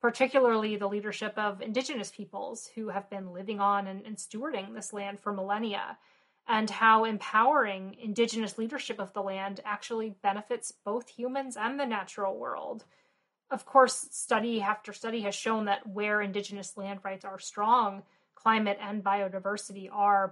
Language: English